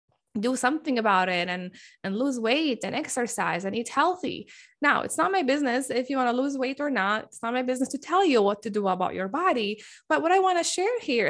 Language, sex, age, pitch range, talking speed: English, female, 20-39, 230-325 Hz, 245 wpm